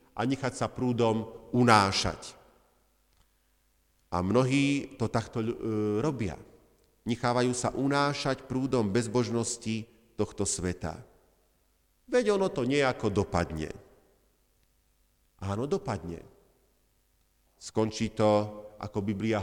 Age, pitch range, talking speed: 50-69, 110-150 Hz, 85 wpm